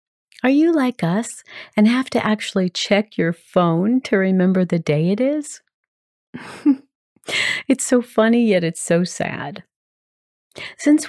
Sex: female